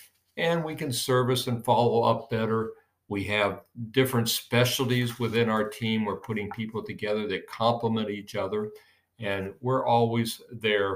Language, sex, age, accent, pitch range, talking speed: English, male, 50-69, American, 100-125 Hz, 150 wpm